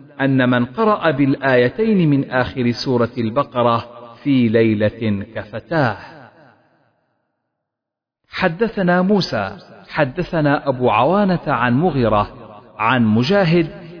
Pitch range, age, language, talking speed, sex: 115-175 Hz, 50-69, Arabic, 85 wpm, male